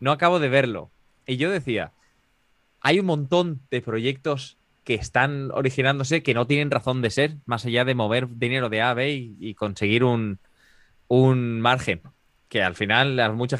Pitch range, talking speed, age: 105-140 Hz, 180 wpm, 20-39